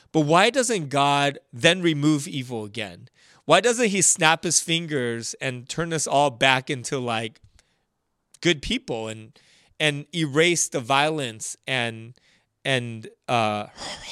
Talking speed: 130 wpm